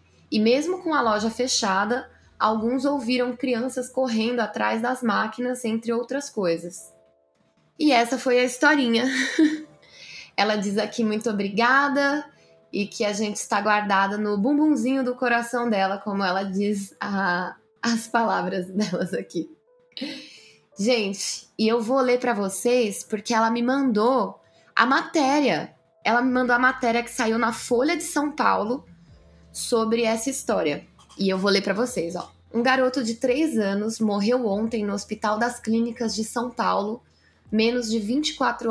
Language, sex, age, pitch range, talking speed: Portuguese, female, 10-29, 205-250 Hz, 150 wpm